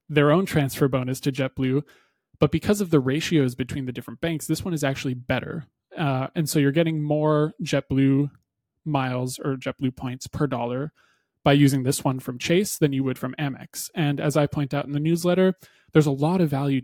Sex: male